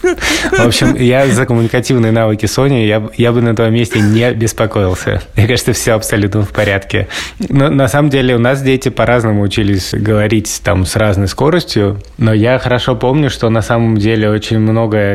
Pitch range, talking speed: 100-120 Hz, 180 wpm